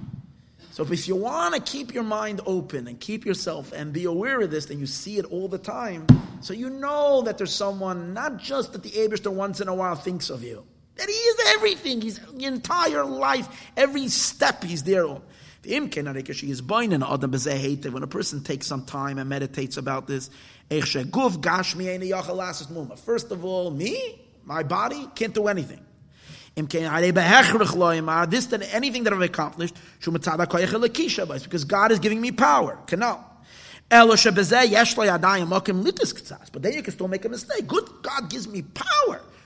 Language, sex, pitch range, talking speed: English, male, 155-220 Hz, 150 wpm